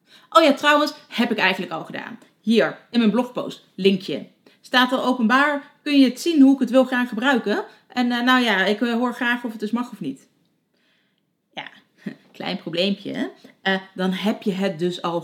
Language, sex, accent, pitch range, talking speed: Dutch, female, Dutch, 200-275 Hz, 195 wpm